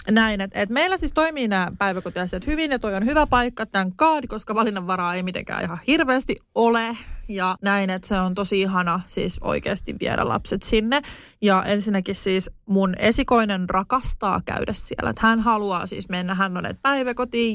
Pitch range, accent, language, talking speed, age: 195-255 Hz, native, Finnish, 175 wpm, 30-49